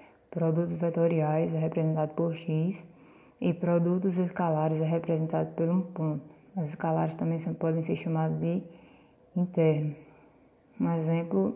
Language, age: Portuguese, 20-39